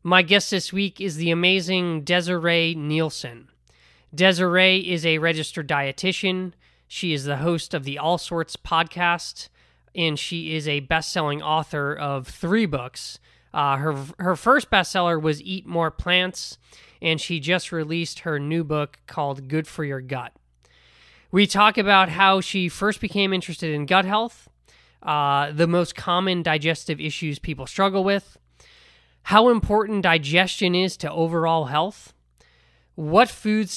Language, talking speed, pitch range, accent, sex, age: English, 145 wpm, 150-185 Hz, American, male, 20-39